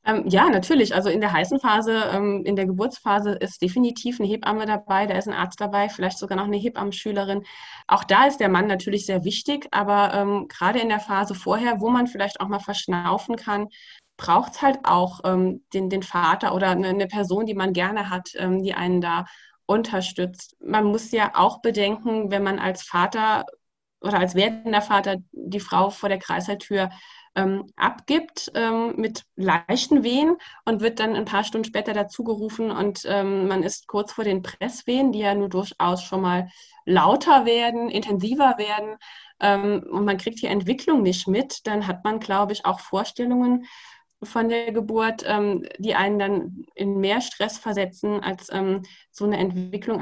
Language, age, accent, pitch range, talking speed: German, 20-39, German, 195-225 Hz, 180 wpm